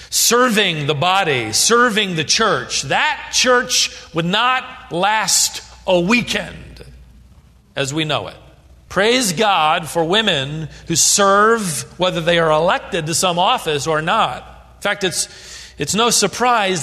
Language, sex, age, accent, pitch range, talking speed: English, male, 40-59, American, 150-245 Hz, 135 wpm